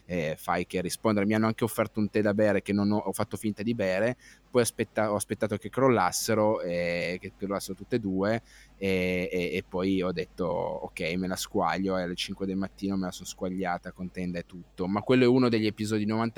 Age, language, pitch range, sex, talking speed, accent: 20-39, Italian, 95-110 Hz, male, 230 wpm, native